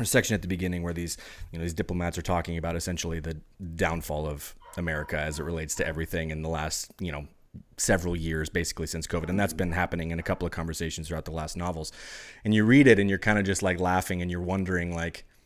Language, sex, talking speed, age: English, male, 235 wpm, 30-49